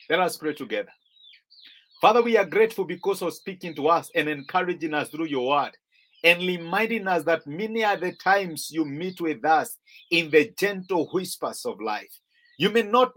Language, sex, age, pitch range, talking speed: English, male, 50-69, 165-225 Hz, 180 wpm